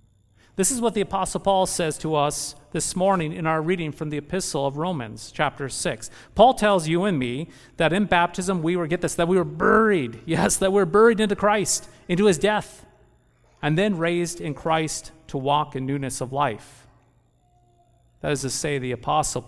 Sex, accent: male, American